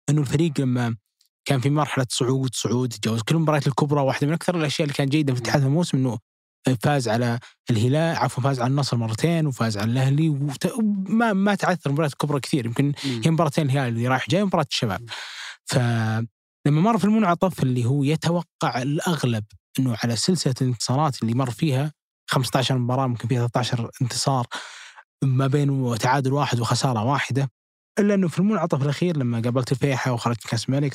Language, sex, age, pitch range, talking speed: Arabic, male, 20-39, 125-155 Hz, 170 wpm